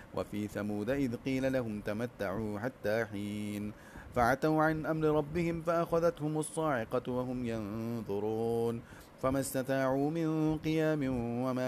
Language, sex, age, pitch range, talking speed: English, male, 30-49, 105-135 Hz, 110 wpm